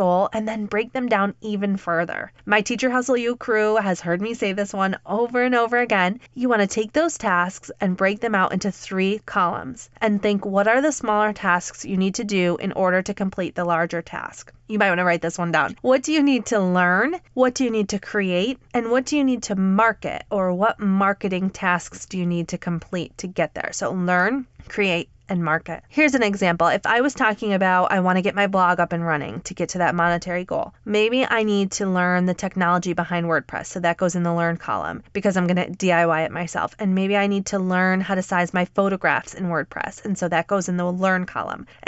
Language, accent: English, American